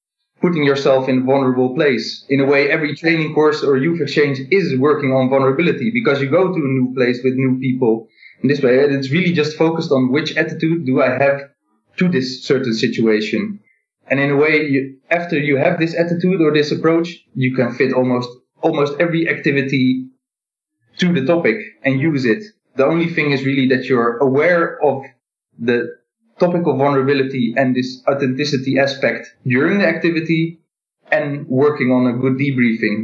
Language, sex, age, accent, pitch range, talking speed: English, male, 20-39, Dutch, 130-165 Hz, 175 wpm